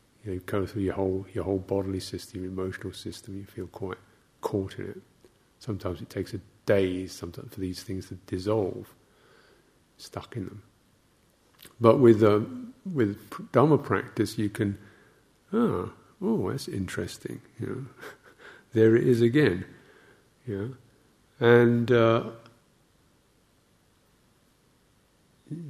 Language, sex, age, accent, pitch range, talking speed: English, male, 50-69, British, 100-120 Hz, 130 wpm